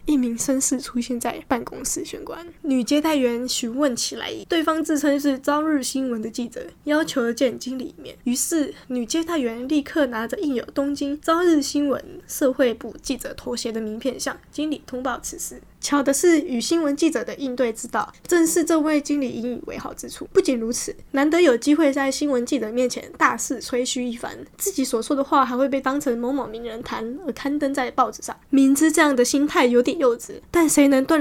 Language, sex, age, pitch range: Chinese, female, 10-29, 245-305 Hz